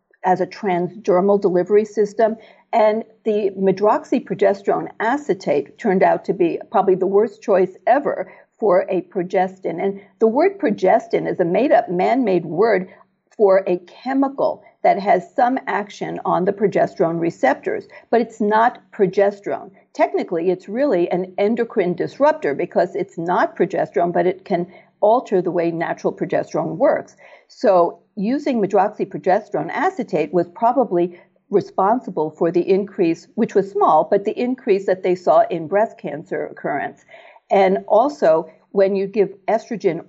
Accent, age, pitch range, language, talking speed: American, 50-69, 180-225 Hz, English, 140 wpm